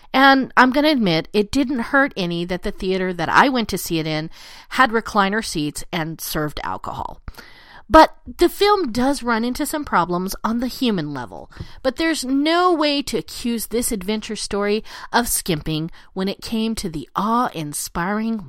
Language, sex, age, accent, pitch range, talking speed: English, female, 40-59, American, 180-275 Hz, 175 wpm